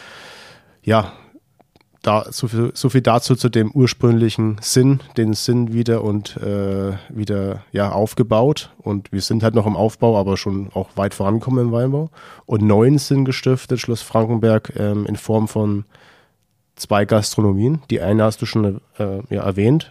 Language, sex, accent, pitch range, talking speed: German, male, German, 100-120 Hz, 160 wpm